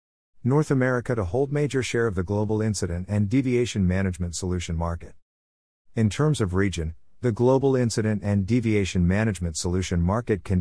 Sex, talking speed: male, 160 wpm